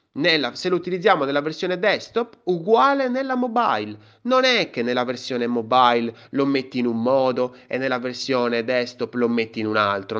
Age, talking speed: 30-49, 170 wpm